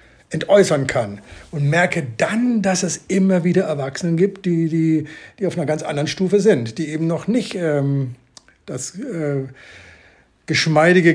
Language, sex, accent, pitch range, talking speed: German, male, German, 145-180 Hz, 150 wpm